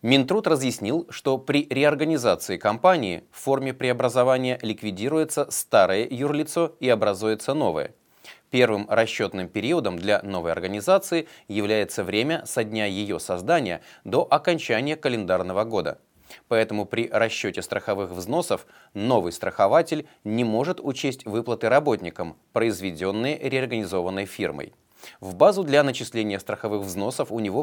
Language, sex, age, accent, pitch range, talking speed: Russian, male, 30-49, native, 105-150 Hz, 115 wpm